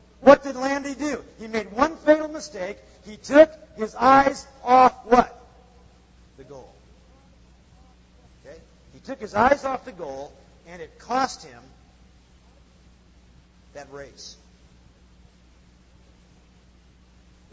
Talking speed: 110 wpm